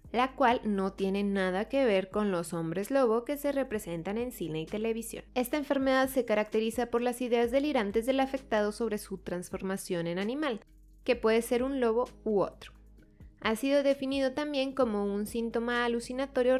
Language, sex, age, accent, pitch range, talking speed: English, female, 20-39, Mexican, 205-265 Hz, 175 wpm